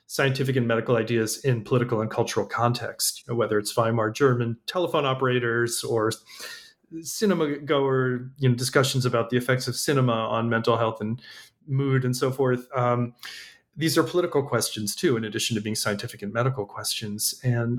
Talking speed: 170 wpm